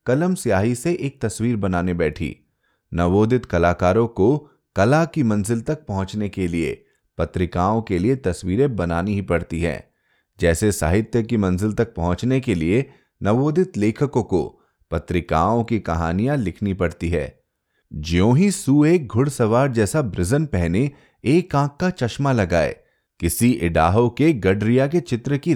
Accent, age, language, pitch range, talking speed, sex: native, 30-49, Hindi, 90-140 Hz, 80 wpm, male